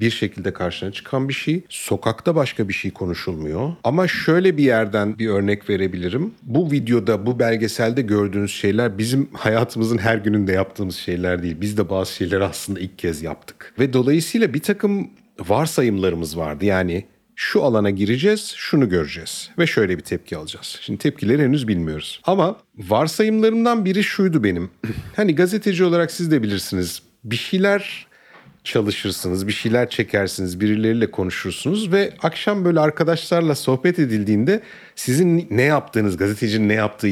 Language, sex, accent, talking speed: Turkish, male, native, 145 wpm